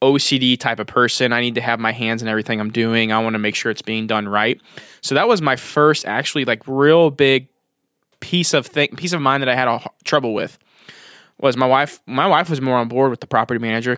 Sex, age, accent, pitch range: male, 20-39, American, 115-145 Hz